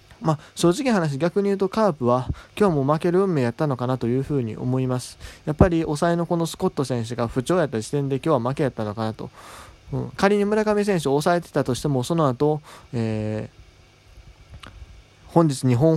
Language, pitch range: Japanese, 120-165 Hz